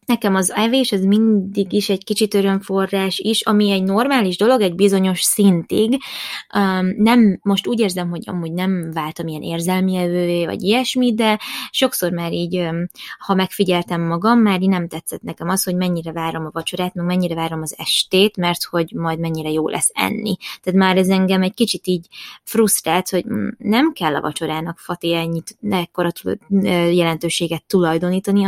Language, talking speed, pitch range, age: Hungarian, 165 wpm, 170-200 Hz, 20-39